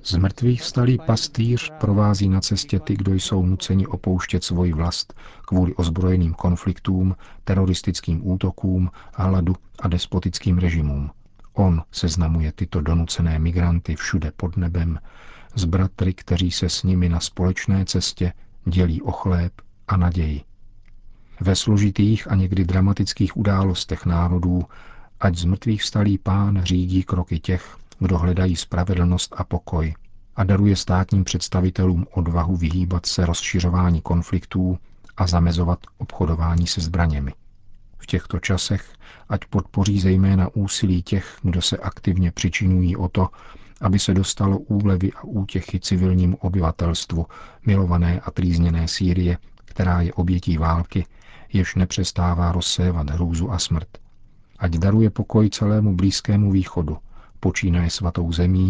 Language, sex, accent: Czech, male, native